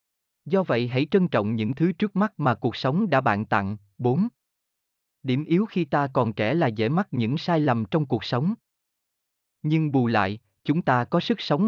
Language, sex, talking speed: Vietnamese, male, 200 wpm